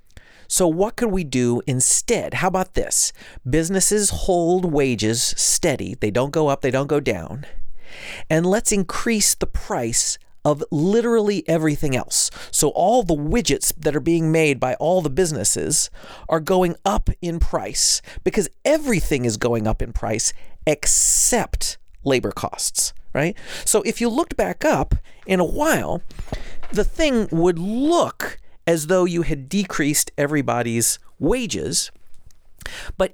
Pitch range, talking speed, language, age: 130-190 Hz, 145 wpm, English, 40-59